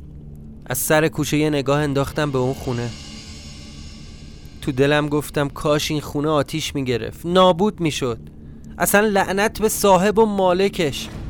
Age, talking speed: 30-49, 145 wpm